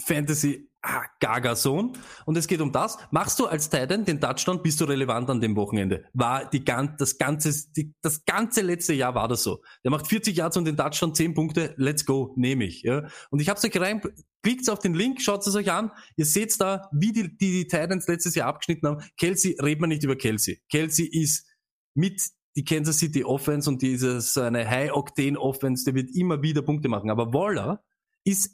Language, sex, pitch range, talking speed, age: German, male, 140-195 Hz, 210 wpm, 20-39